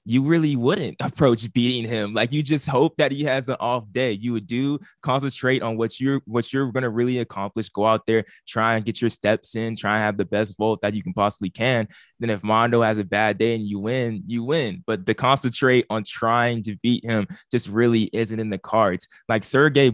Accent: American